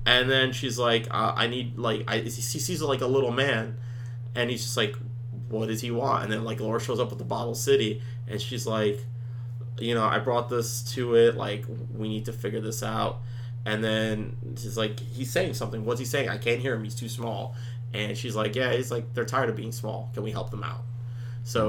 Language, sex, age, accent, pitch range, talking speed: English, male, 30-49, American, 115-120 Hz, 230 wpm